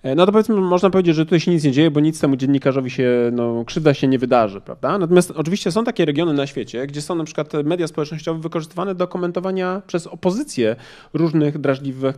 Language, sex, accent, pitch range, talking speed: Polish, male, native, 130-175 Hz, 205 wpm